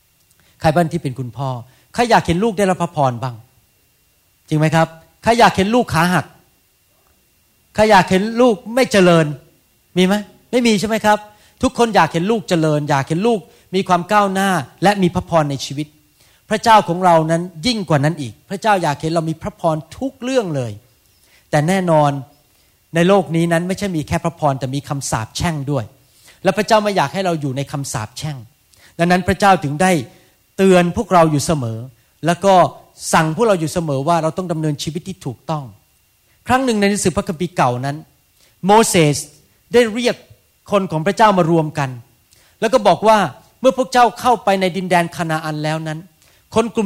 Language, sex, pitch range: Thai, male, 145-200 Hz